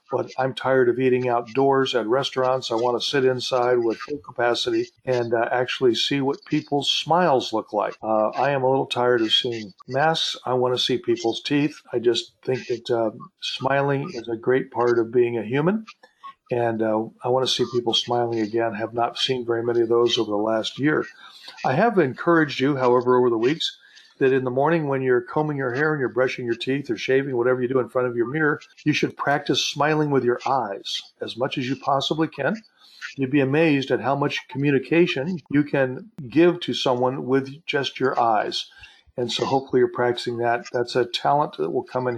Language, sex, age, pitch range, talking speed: English, male, 50-69, 120-145 Hz, 210 wpm